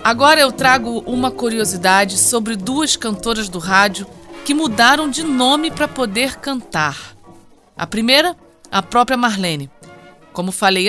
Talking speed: 130 wpm